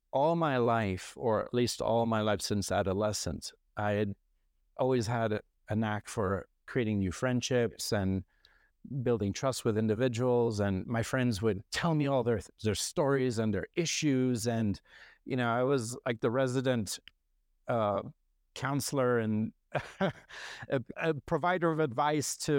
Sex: male